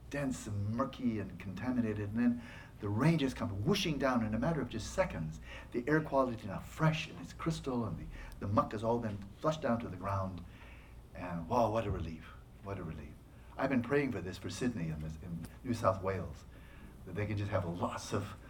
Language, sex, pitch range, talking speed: English, male, 90-120 Hz, 215 wpm